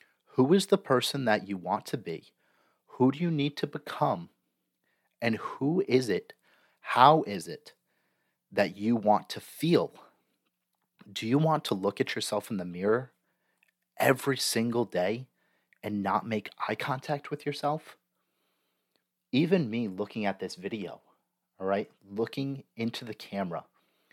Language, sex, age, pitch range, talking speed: English, male, 30-49, 100-130 Hz, 145 wpm